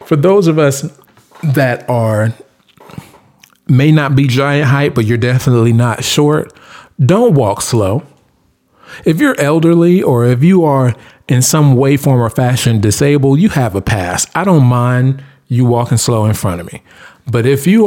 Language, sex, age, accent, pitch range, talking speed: English, male, 40-59, American, 115-150 Hz, 170 wpm